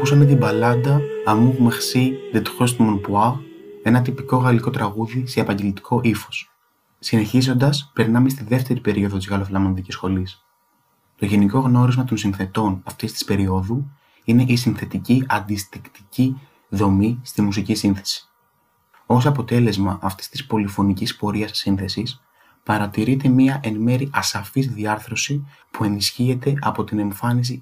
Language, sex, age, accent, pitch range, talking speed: Greek, male, 20-39, native, 100-130 Hz, 125 wpm